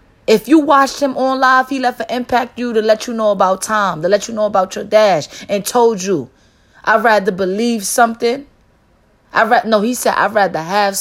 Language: English